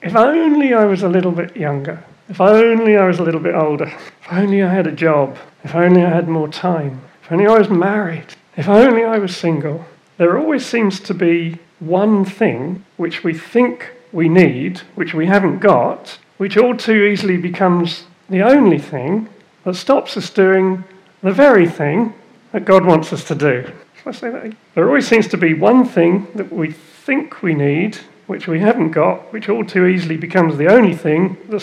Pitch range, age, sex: 155-195 Hz, 40-59, male